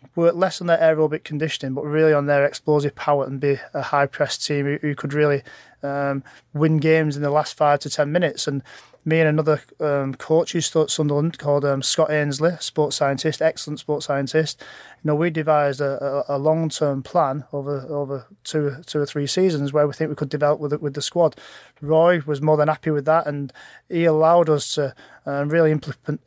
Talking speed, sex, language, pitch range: 205 wpm, male, English, 140-160 Hz